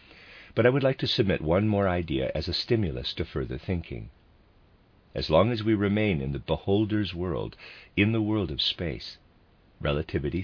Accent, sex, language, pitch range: American, male, English, 75-110 Hz